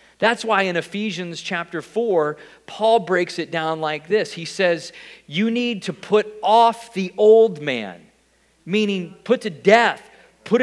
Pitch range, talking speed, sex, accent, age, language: 185-235 Hz, 150 wpm, male, American, 40-59, English